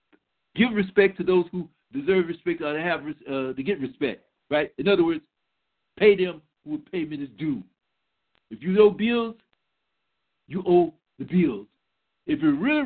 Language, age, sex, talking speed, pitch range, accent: English, 60-79, male, 165 wpm, 185-250 Hz, American